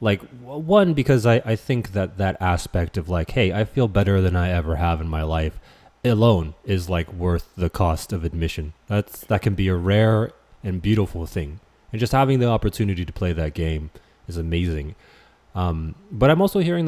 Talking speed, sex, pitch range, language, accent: 190 wpm, male, 85-110 Hz, English, American